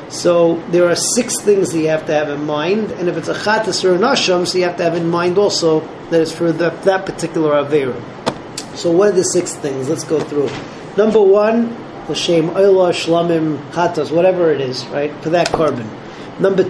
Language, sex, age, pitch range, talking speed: English, male, 40-59, 155-190 Hz, 210 wpm